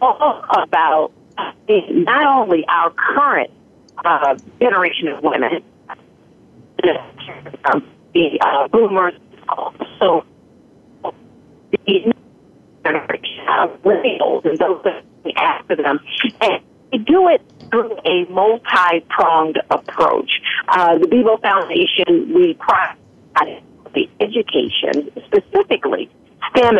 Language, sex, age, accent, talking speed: English, female, 50-69, American, 90 wpm